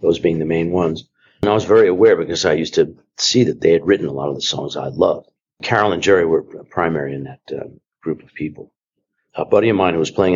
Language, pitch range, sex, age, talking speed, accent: English, 75-95 Hz, male, 50-69, 255 wpm, American